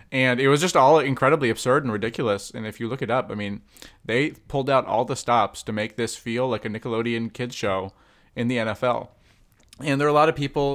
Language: English